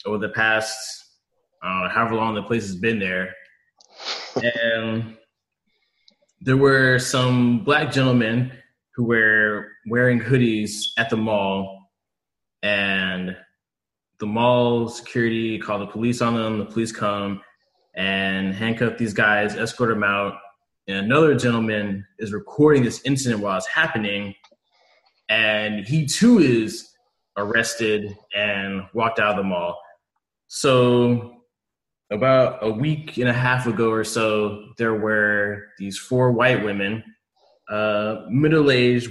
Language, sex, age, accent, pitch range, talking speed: English, male, 20-39, American, 105-125 Hz, 125 wpm